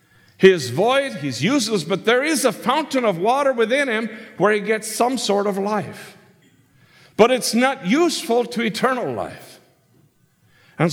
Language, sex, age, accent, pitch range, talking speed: English, male, 50-69, American, 165-240 Hz, 160 wpm